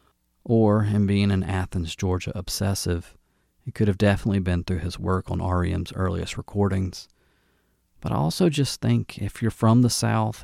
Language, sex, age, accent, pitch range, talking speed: English, male, 40-59, American, 85-105 Hz, 165 wpm